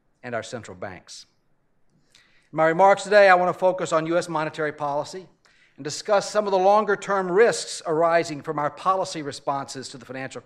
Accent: American